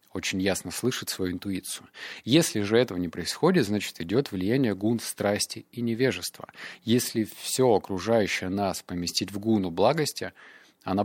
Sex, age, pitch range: male, 30-49, 95-125 Hz